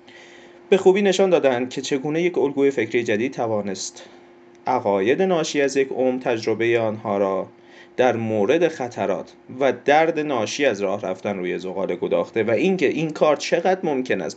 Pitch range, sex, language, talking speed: 105-150 Hz, male, Persian, 160 wpm